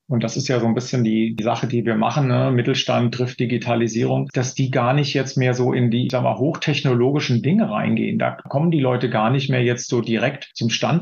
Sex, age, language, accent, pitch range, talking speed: male, 40-59, German, German, 120-140 Hz, 240 wpm